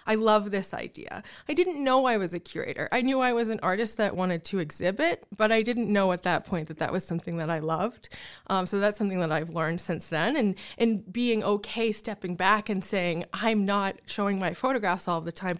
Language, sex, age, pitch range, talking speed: English, female, 20-39, 185-250 Hz, 230 wpm